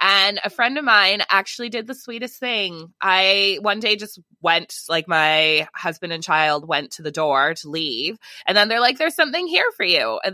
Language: English